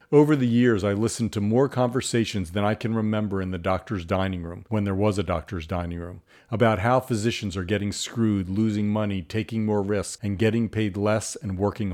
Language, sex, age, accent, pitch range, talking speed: English, male, 50-69, American, 95-115 Hz, 205 wpm